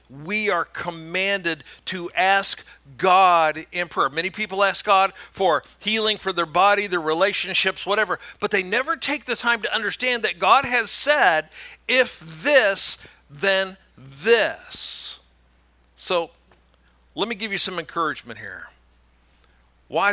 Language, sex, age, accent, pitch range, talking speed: English, male, 50-69, American, 170-255 Hz, 135 wpm